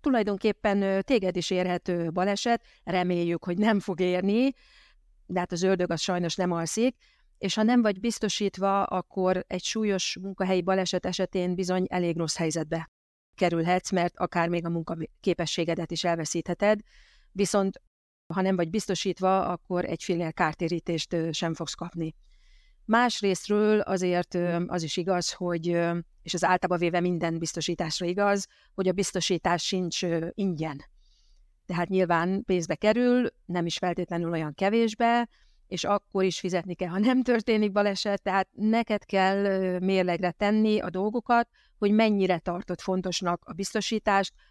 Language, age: Hungarian, 40-59